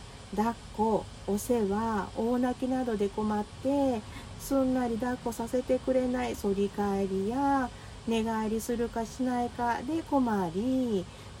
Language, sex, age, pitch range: Japanese, female, 40-59, 200-270 Hz